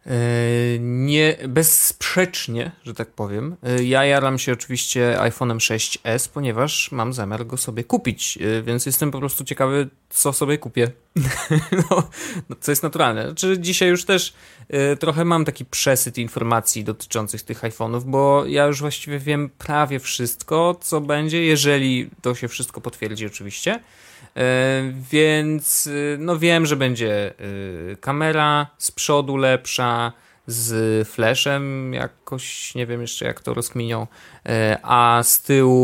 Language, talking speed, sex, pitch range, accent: Polish, 125 wpm, male, 115-145 Hz, native